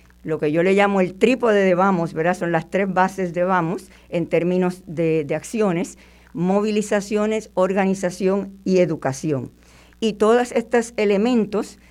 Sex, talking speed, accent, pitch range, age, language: female, 140 wpm, American, 165-205 Hz, 50-69, Spanish